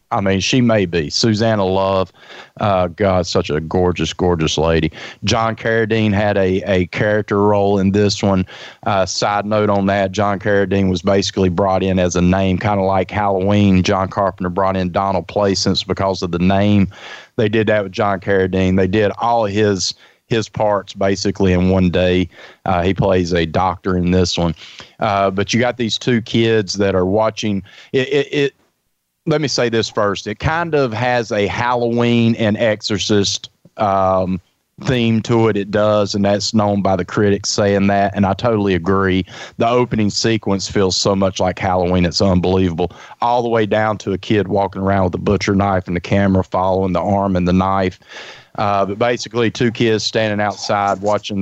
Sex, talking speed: male, 190 wpm